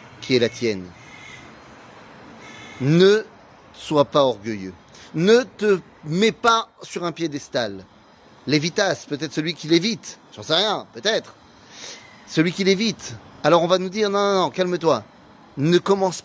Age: 30-49